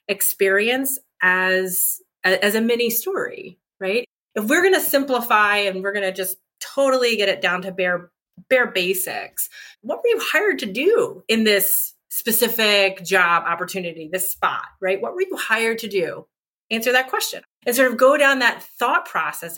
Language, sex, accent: English, female, American